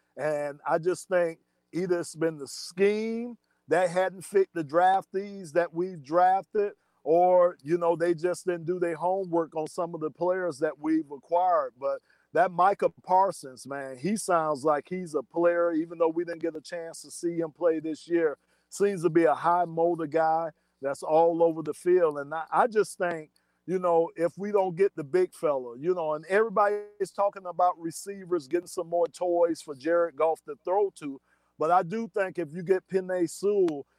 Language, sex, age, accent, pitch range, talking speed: English, male, 50-69, American, 160-190 Hz, 195 wpm